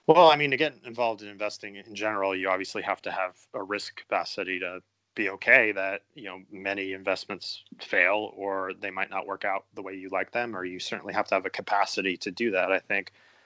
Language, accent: English, American